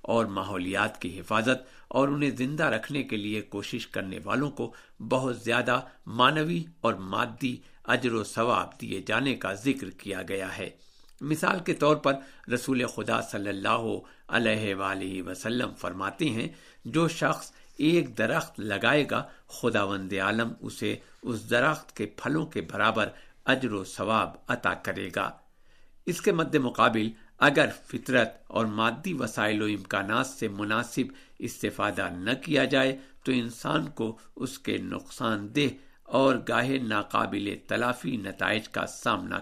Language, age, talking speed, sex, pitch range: Urdu, 60-79, 145 wpm, male, 105-130 Hz